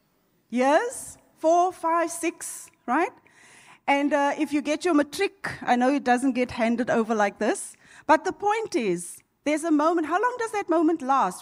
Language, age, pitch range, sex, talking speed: English, 30-49, 240-325 Hz, female, 180 wpm